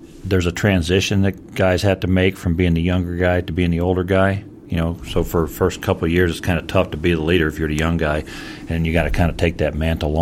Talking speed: 305 wpm